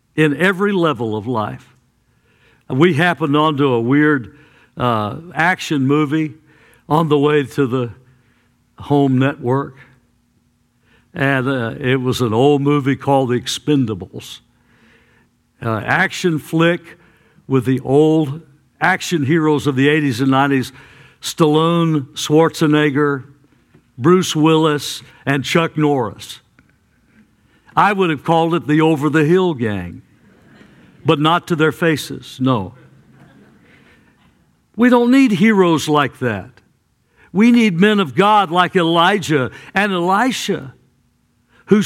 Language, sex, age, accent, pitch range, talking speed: English, male, 60-79, American, 130-175 Hz, 120 wpm